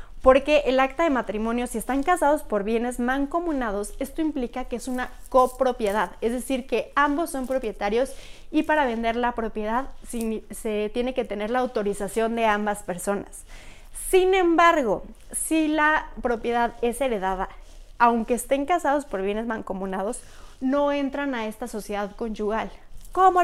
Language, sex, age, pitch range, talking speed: Spanish, female, 20-39, 215-280 Hz, 145 wpm